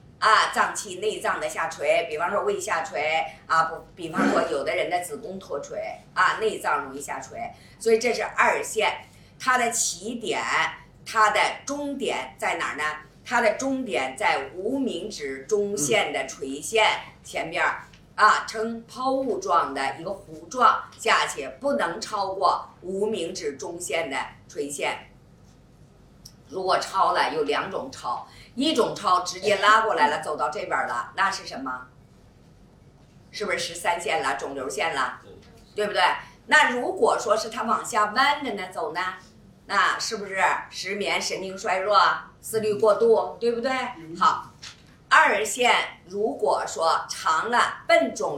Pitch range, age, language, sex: 180-250 Hz, 50-69, Chinese, female